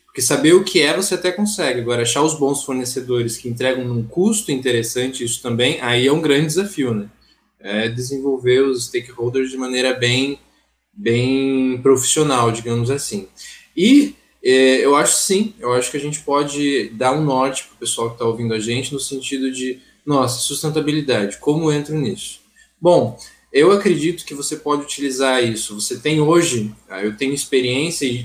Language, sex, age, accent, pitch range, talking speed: Portuguese, male, 20-39, Brazilian, 125-165 Hz, 175 wpm